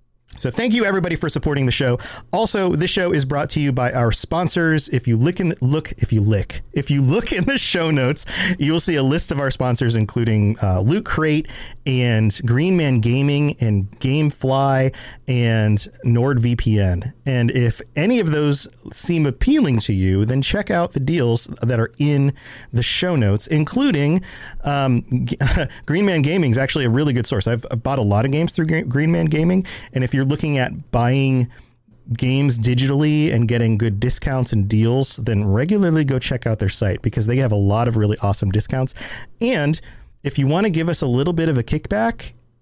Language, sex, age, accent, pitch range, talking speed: English, male, 40-59, American, 115-155 Hz, 200 wpm